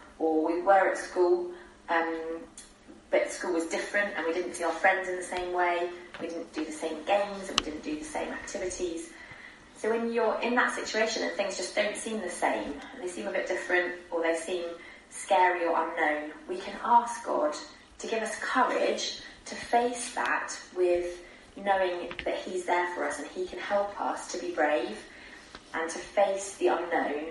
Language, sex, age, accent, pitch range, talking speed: English, female, 20-39, British, 165-195 Hz, 195 wpm